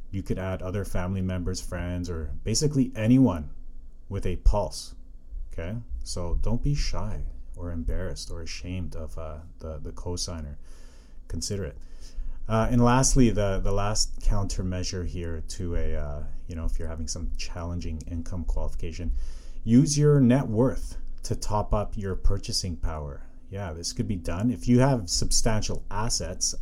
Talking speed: 155 wpm